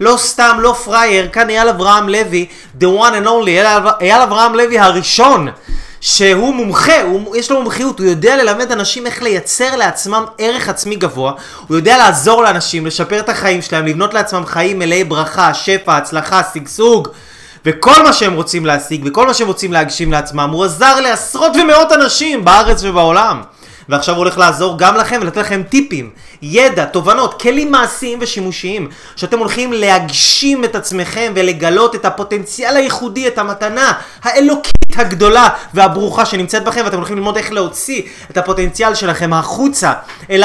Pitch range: 185-255 Hz